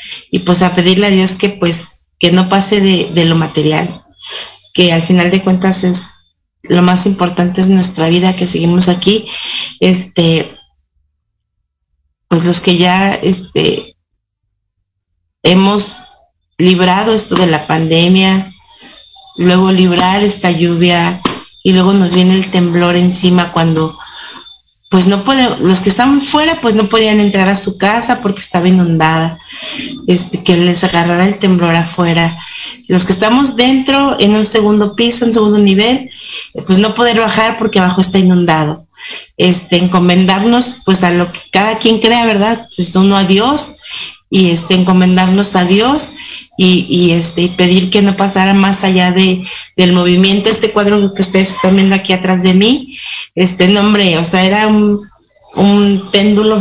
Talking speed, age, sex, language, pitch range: 155 wpm, 30-49, female, Spanish, 175-210 Hz